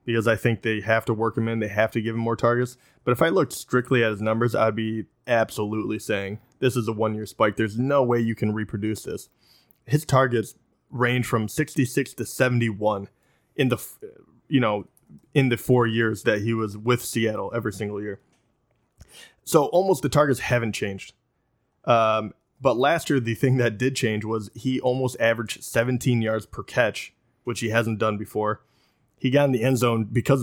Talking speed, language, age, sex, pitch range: 195 wpm, English, 20-39, male, 110-130 Hz